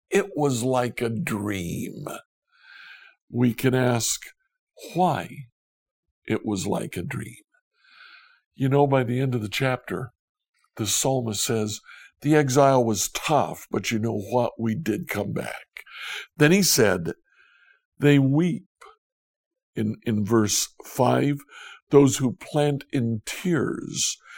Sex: male